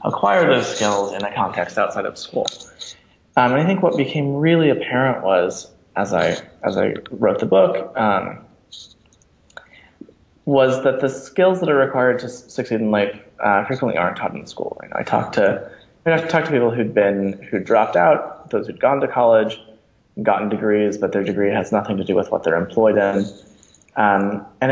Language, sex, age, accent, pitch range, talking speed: English, male, 20-39, American, 100-125 Hz, 195 wpm